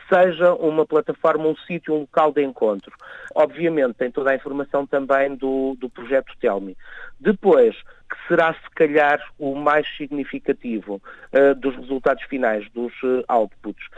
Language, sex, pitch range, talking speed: Portuguese, male, 135-165 Hz, 140 wpm